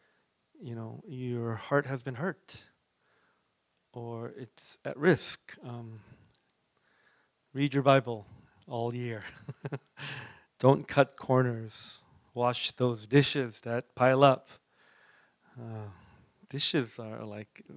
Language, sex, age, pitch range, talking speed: English, male, 30-49, 115-135 Hz, 100 wpm